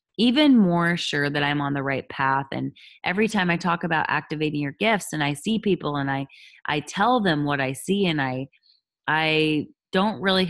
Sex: female